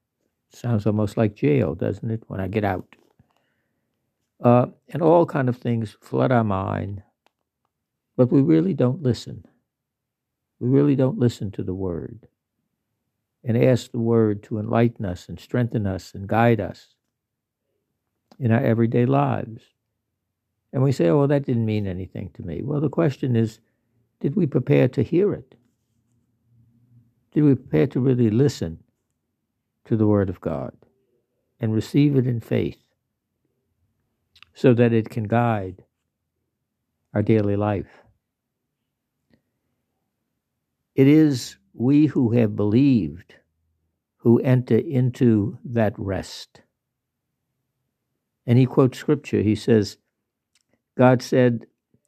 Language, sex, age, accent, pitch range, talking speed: English, male, 60-79, American, 110-130 Hz, 130 wpm